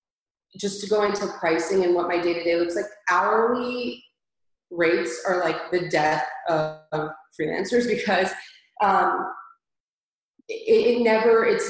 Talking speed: 140 wpm